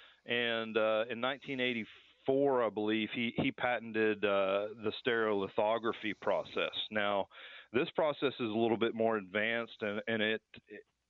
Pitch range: 100-115 Hz